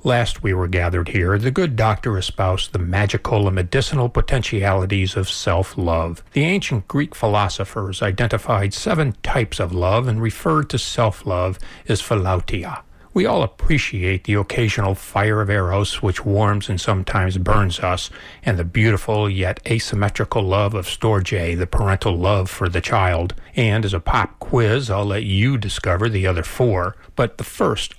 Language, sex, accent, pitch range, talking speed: English, male, American, 95-120 Hz, 160 wpm